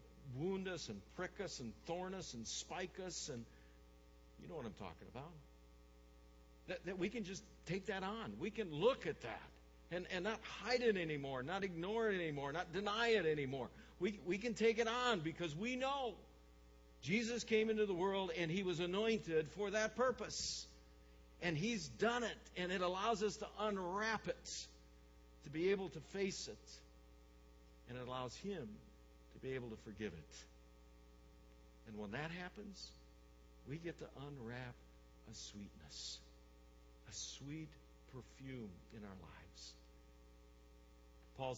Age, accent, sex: 60-79, American, male